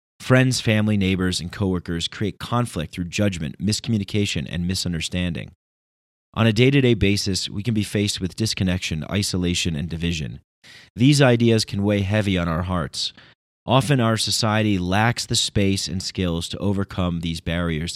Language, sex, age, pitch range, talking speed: English, male, 30-49, 90-110 Hz, 155 wpm